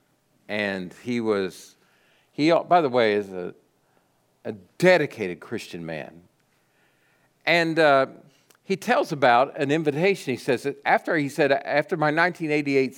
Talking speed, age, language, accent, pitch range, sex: 135 wpm, 50-69, English, American, 115-150 Hz, male